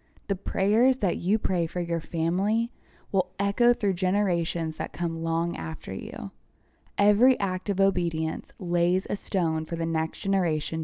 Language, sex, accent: English, female, American